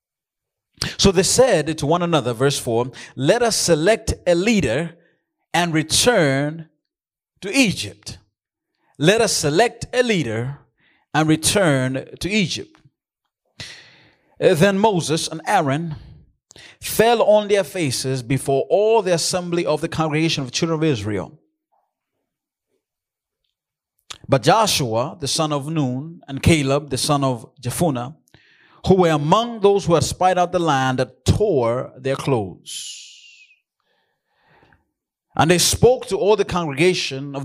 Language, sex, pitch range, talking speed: English, male, 135-185 Hz, 130 wpm